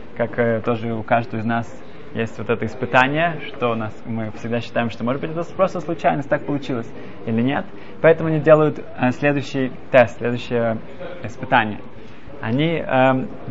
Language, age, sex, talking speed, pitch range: Russian, 20-39, male, 165 wpm, 120-150 Hz